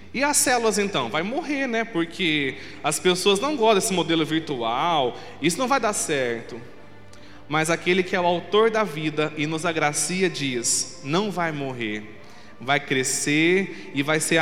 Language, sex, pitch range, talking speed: Portuguese, male, 155-220 Hz, 165 wpm